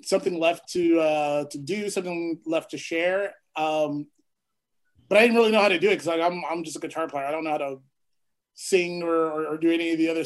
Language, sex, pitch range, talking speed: English, male, 155-180 Hz, 245 wpm